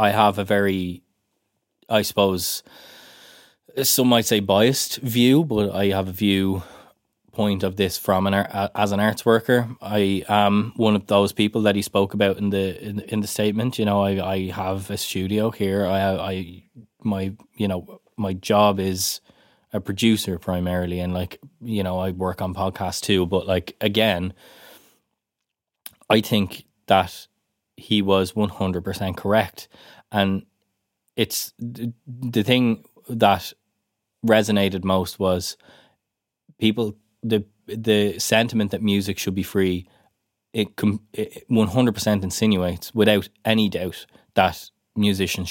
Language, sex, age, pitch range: English, male, 20-39, 95-110 Hz